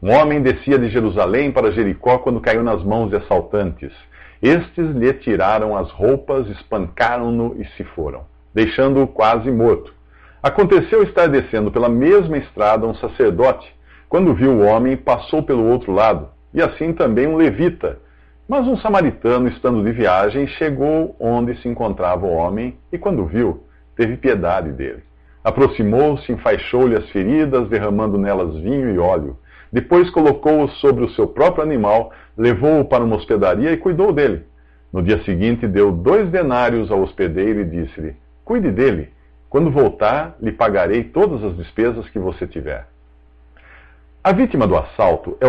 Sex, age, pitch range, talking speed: male, 50-69, 85-135 Hz, 150 wpm